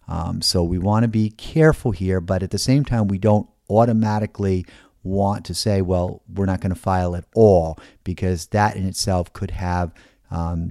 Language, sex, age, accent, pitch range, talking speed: English, male, 40-59, American, 90-115 Hz, 190 wpm